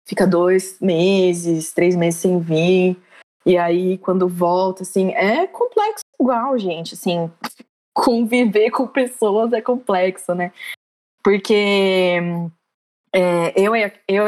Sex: female